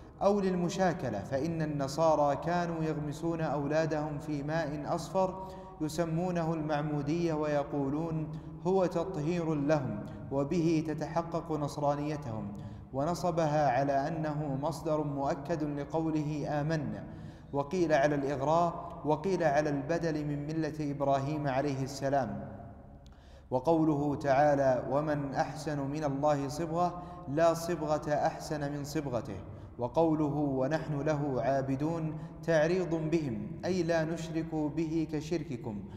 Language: Arabic